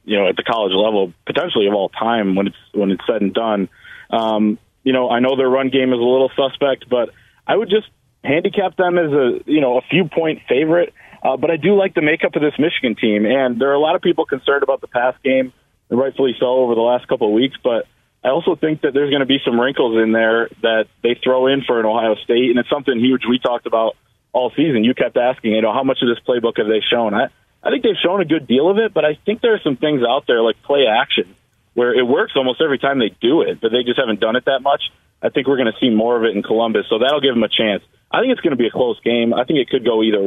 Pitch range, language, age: 115-140 Hz, English, 30-49